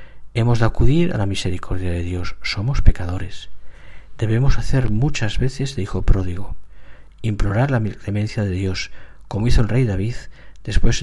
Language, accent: Spanish, Spanish